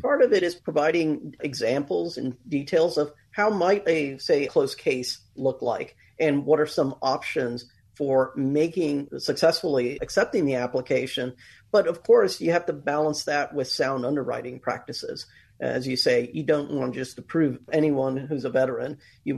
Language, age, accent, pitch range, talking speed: English, 40-59, American, 135-185 Hz, 165 wpm